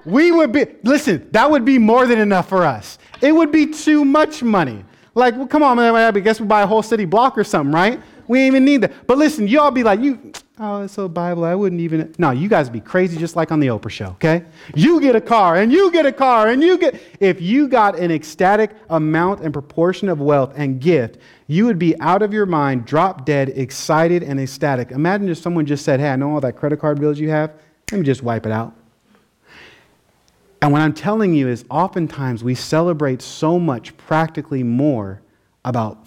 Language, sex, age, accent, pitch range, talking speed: English, male, 30-49, American, 130-205 Hz, 225 wpm